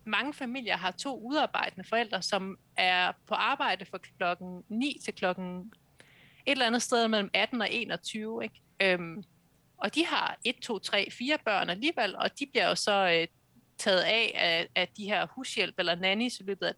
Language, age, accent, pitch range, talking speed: Danish, 30-49, native, 180-235 Hz, 185 wpm